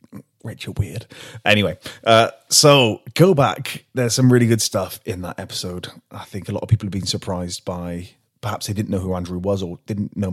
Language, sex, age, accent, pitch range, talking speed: English, male, 30-49, British, 90-115 Hz, 205 wpm